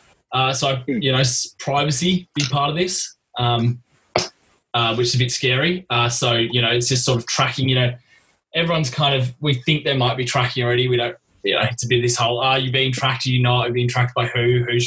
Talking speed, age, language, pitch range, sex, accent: 250 wpm, 20-39, English, 120-135 Hz, male, Australian